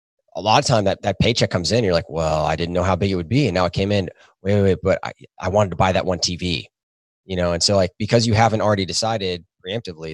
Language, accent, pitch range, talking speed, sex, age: English, American, 90-110 Hz, 285 wpm, male, 20-39